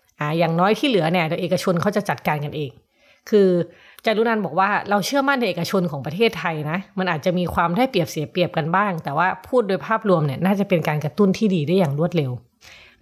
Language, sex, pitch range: Thai, female, 165-215 Hz